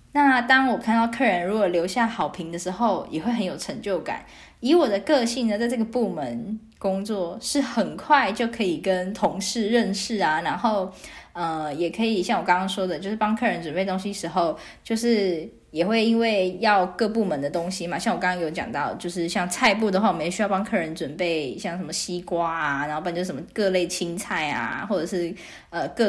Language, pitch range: Chinese, 180-230 Hz